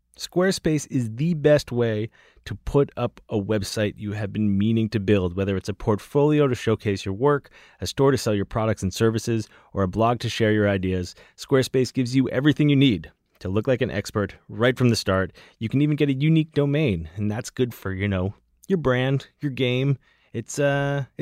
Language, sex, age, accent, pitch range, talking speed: English, male, 30-49, American, 100-135 Hz, 205 wpm